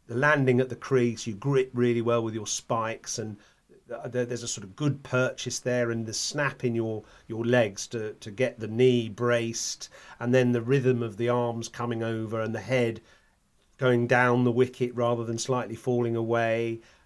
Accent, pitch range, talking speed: British, 115-130 Hz, 190 wpm